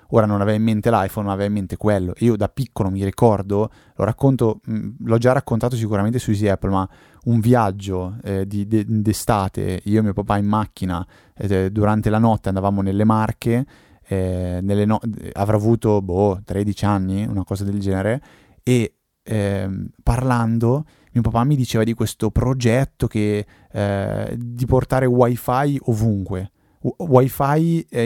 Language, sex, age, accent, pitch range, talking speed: Italian, male, 20-39, native, 100-120 Hz, 160 wpm